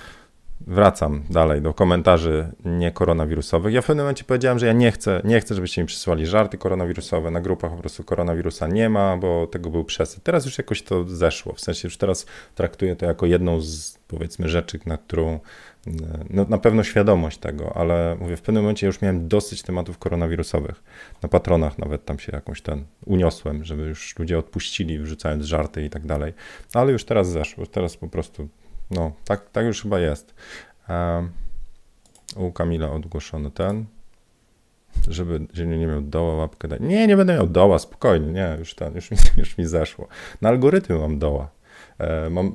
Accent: native